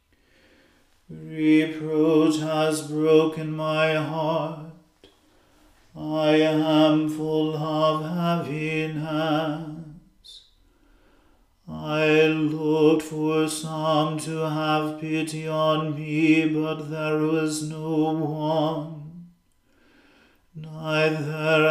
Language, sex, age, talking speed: English, male, 40-59, 70 wpm